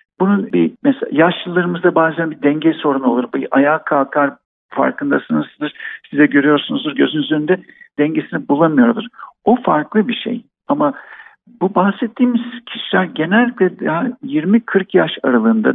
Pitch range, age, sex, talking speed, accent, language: 165-250 Hz, 60-79, male, 120 wpm, native, Turkish